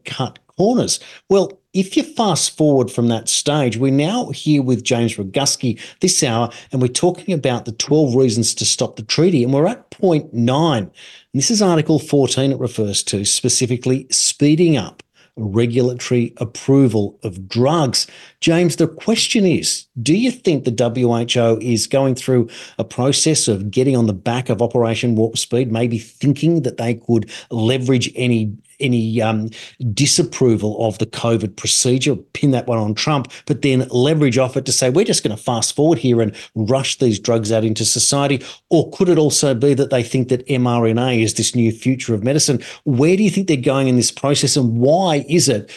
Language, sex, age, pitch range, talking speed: English, male, 40-59, 115-145 Hz, 185 wpm